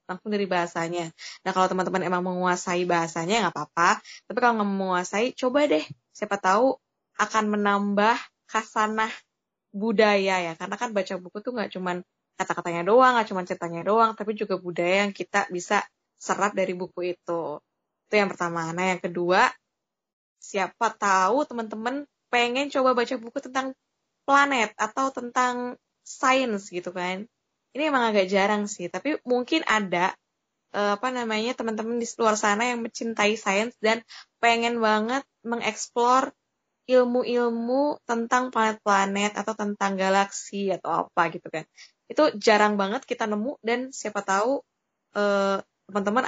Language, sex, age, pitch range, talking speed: Indonesian, female, 10-29, 185-240 Hz, 135 wpm